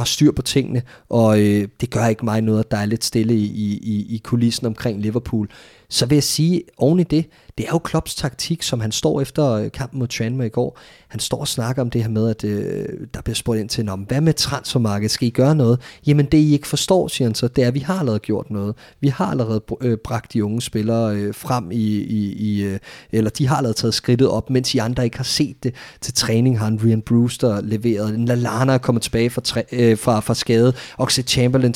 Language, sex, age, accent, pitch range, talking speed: Danish, male, 30-49, native, 115-150 Hz, 240 wpm